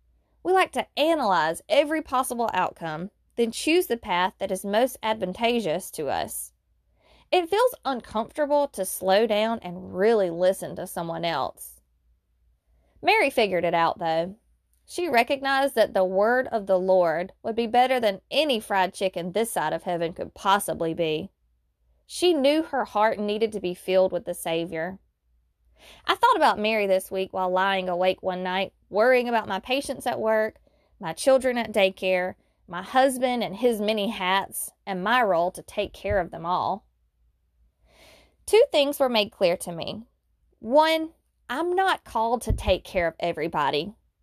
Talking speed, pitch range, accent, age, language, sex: 160 wpm, 175-245 Hz, American, 20-39, English, female